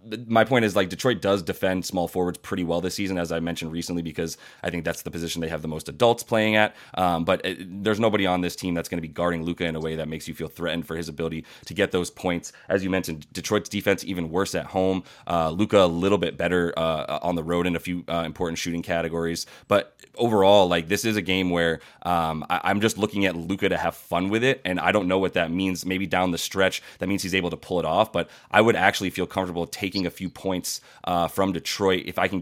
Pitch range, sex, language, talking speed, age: 85-95 Hz, male, English, 255 wpm, 20-39